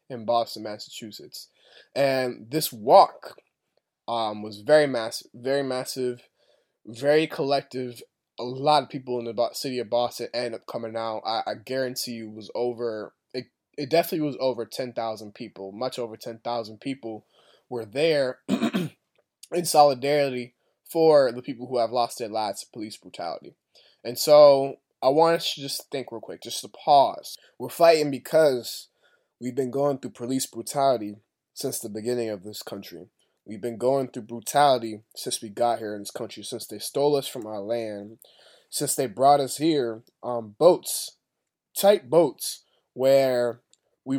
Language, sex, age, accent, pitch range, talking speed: English, male, 20-39, American, 115-140 Hz, 160 wpm